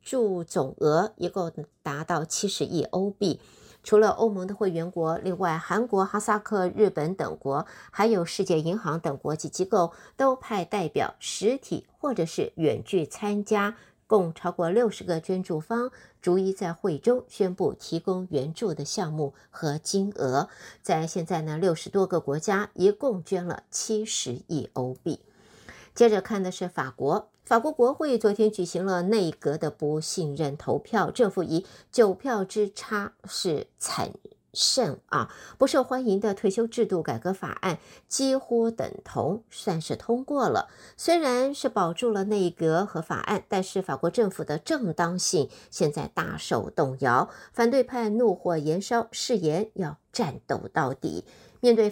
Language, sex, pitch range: Chinese, female, 170-220 Hz